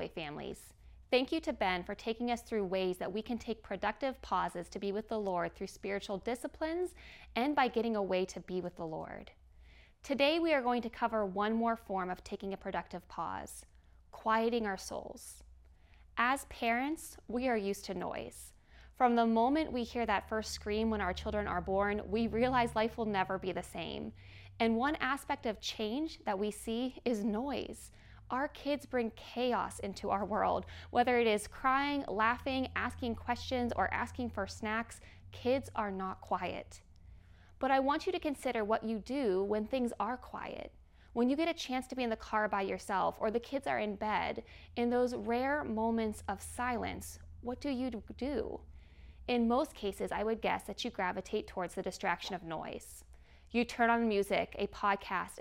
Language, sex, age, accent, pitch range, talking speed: English, female, 20-39, American, 195-250 Hz, 185 wpm